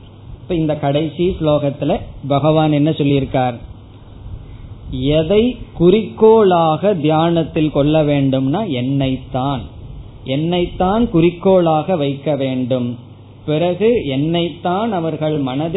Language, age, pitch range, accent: Tamil, 20-39, 140-180 Hz, native